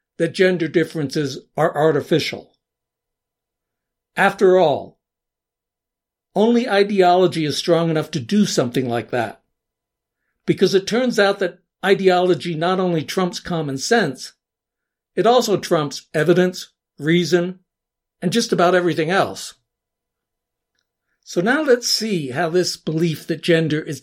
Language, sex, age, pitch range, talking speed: English, male, 60-79, 155-190 Hz, 120 wpm